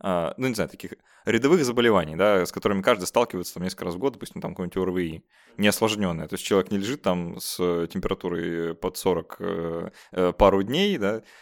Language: Russian